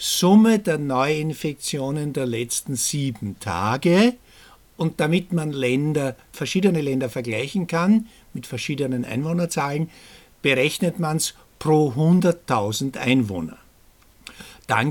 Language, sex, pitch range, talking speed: German, male, 125-160 Hz, 100 wpm